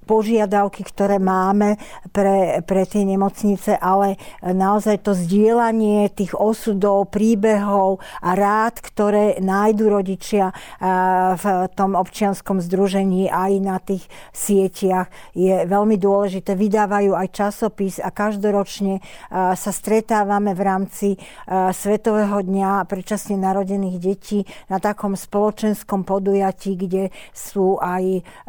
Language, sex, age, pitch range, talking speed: Slovak, female, 50-69, 190-205 Hz, 105 wpm